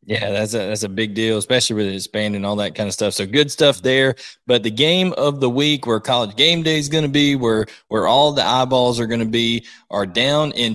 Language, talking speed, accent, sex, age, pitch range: English, 260 wpm, American, male, 20-39, 110-140 Hz